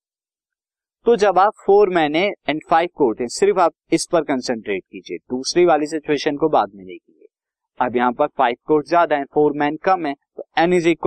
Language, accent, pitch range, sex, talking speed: Hindi, native, 130-175 Hz, male, 185 wpm